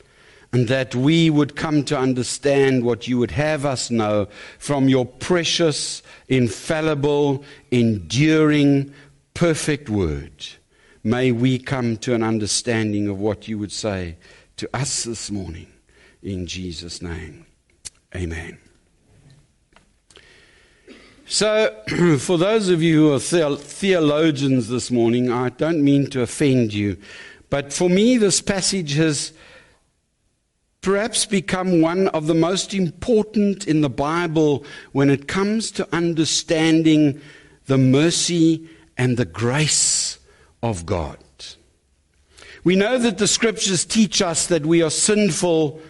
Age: 60-79